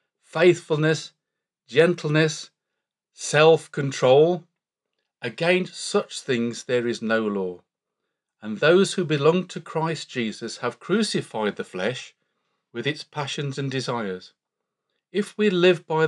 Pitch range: 120-175 Hz